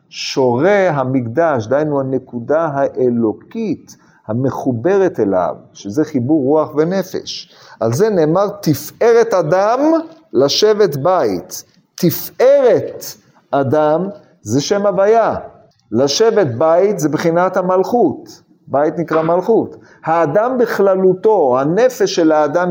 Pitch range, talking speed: 135-200 Hz, 95 wpm